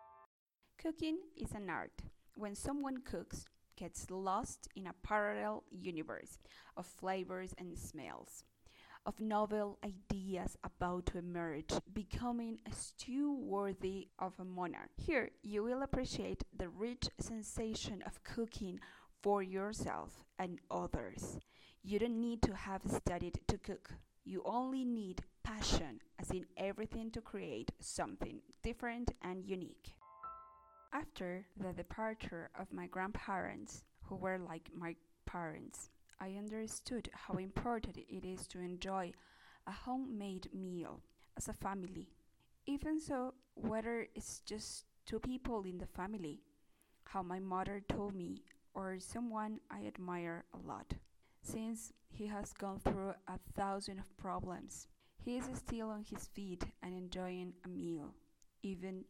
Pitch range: 180-225 Hz